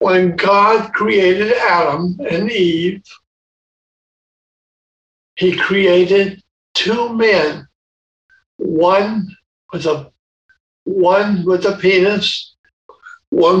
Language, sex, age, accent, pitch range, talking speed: English, male, 60-79, American, 150-205 Hz, 80 wpm